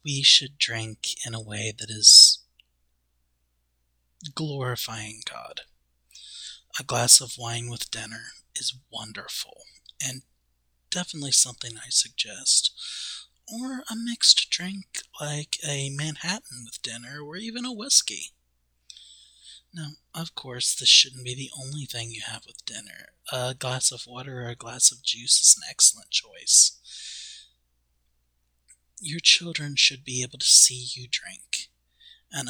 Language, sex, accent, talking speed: English, male, American, 135 wpm